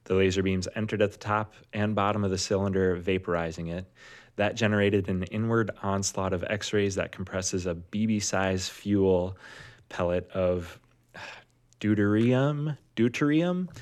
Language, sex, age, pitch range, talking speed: English, male, 20-39, 90-110 Hz, 135 wpm